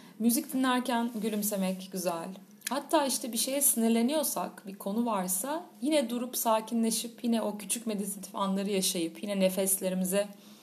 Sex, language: female, Turkish